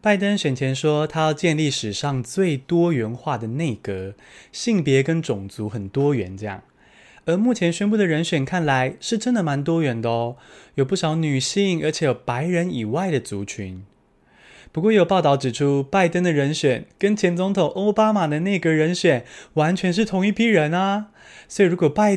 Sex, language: male, Chinese